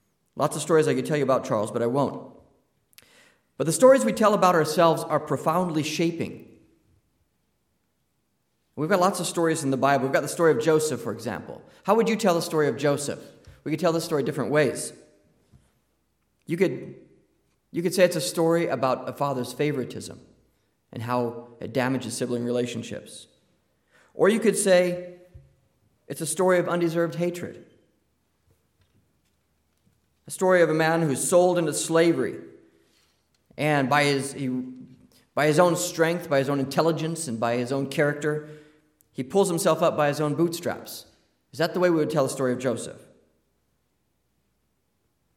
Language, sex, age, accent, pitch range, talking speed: English, male, 30-49, American, 120-165 Hz, 165 wpm